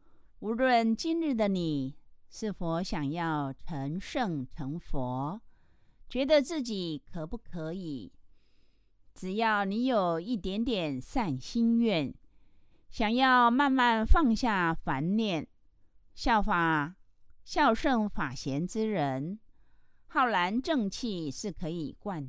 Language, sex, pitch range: Chinese, female, 155-235 Hz